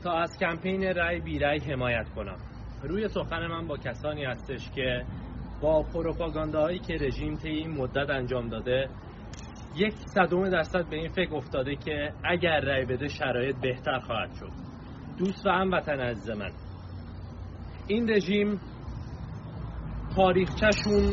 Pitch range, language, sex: 140-180 Hz, Persian, male